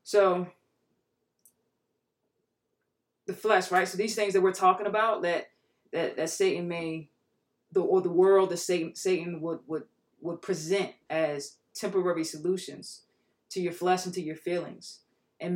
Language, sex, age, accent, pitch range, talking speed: English, female, 20-39, American, 165-215 Hz, 145 wpm